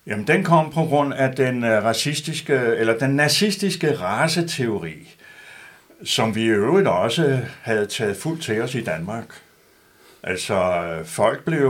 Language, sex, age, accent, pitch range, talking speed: Danish, male, 60-79, native, 115-160 Hz, 140 wpm